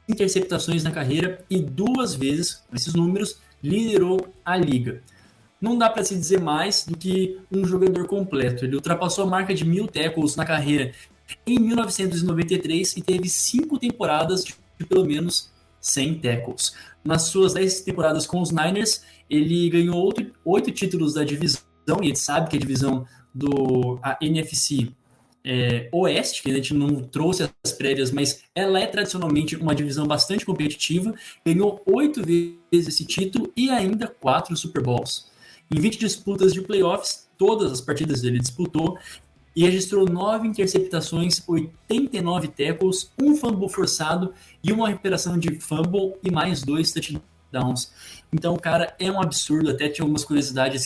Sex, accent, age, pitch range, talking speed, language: male, Brazilian, 20-39, 145-190 Hz, 155 wpm, Portuguese